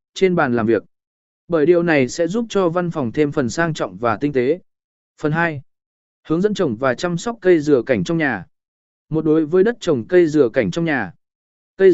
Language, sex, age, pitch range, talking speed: Vietnamese, male, 20-39, 140-195 Hz, 215 wpm